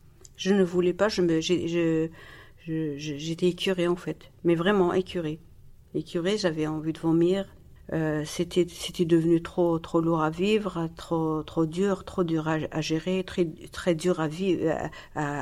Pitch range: 165-190 Hz